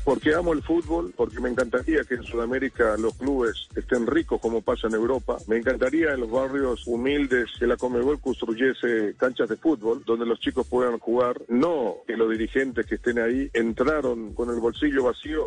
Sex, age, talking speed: male, 50-69, 185 wpm